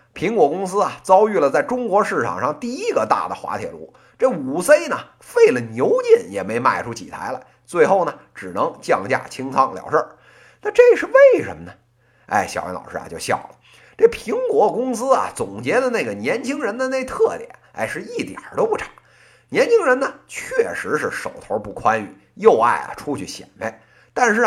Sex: male